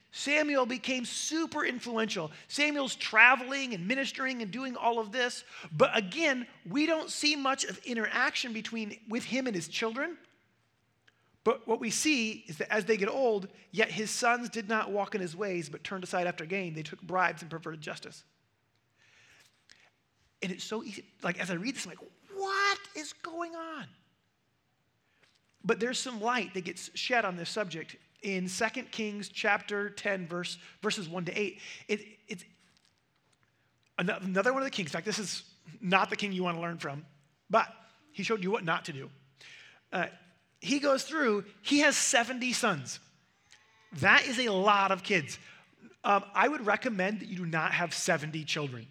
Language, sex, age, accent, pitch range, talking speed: English, male, 30-49, American, 180-245 Hz, 180 wpm